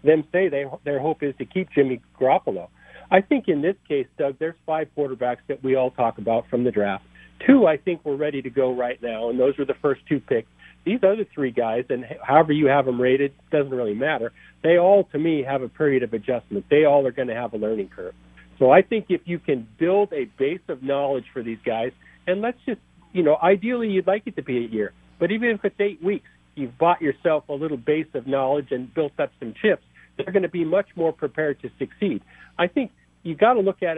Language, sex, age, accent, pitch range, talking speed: English, male, 50-69, American, 135-180 Hz, 240 wpm